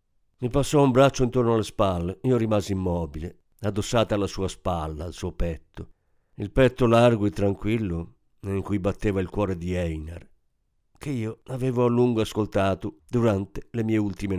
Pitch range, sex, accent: 90-130 Hz, male, native